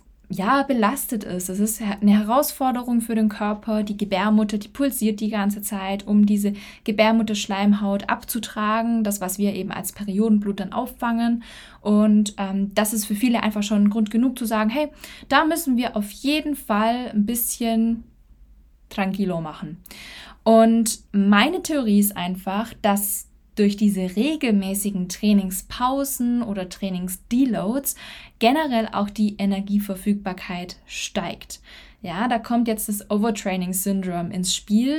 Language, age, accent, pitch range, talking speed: German, 10-29, German, 205-235 Hz, 135 wpm